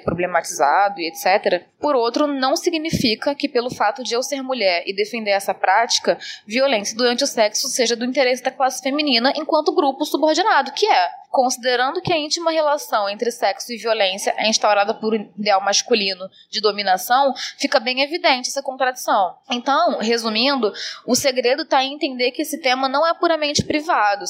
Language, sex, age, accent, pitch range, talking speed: Portuguese, female, 20-39, Brazilian, 220-285 Hz, 170 wpm